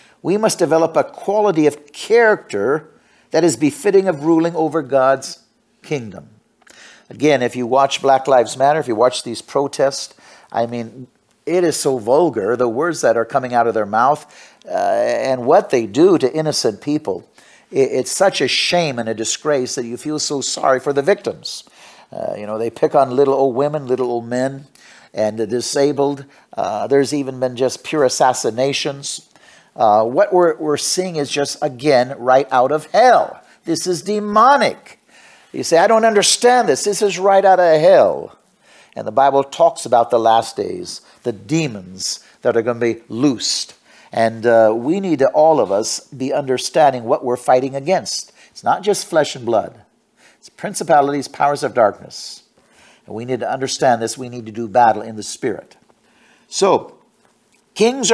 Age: 50-69